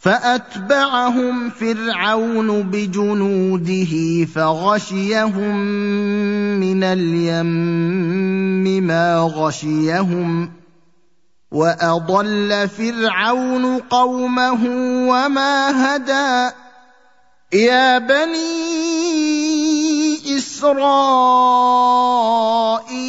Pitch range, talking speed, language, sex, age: 190-250 Hz, 40 wpm, Arabic, male, 30-49